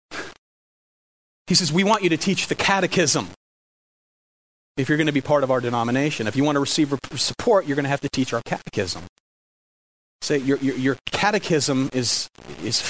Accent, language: American, English